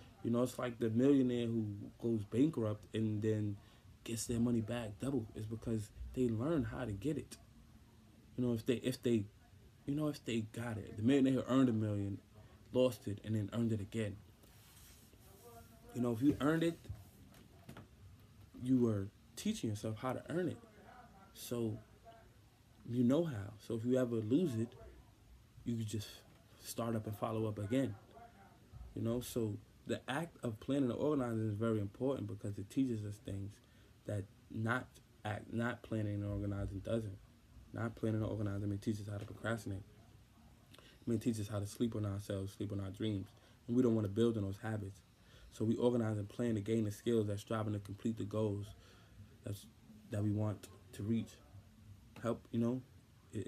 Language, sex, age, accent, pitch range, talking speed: English, male, 20-39, American, 105-120 Hz, 185 wpm